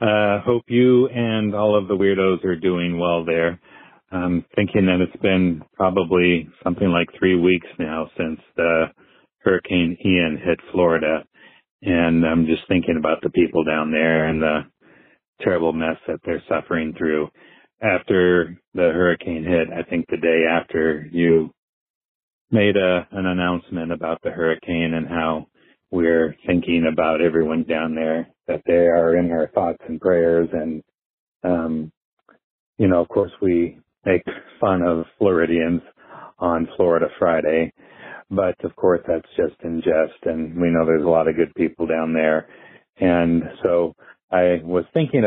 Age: 40-59